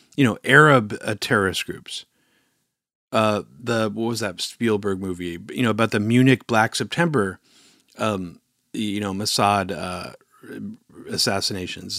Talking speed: 125 wpm